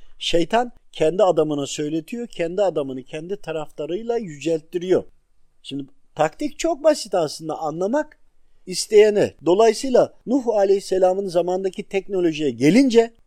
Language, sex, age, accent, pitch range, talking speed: Turkish, male, 50-69, native, 155-210 Hz, 100 wpm